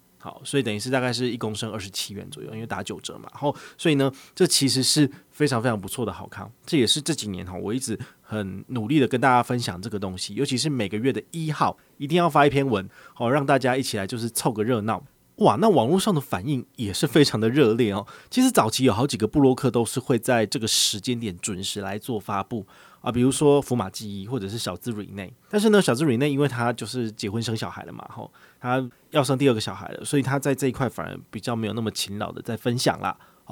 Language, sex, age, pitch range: Chinese, male, 20-39, 105-135 Hz